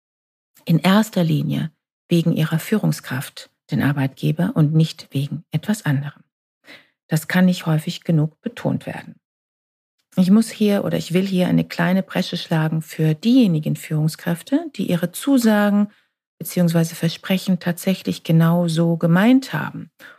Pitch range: 160-200 Hz